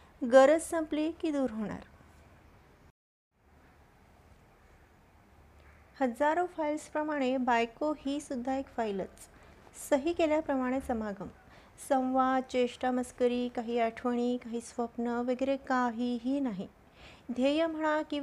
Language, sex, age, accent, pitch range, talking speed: Marathi, female, 30-49, native, 245-295 Hz, 70 wpm